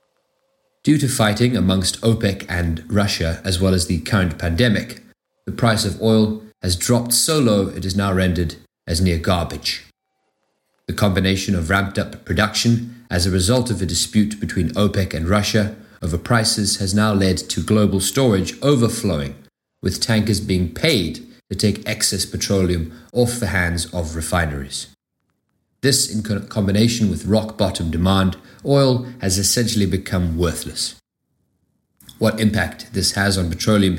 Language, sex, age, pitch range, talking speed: English, male, 30-49, 90-110 Hz, 150 wpm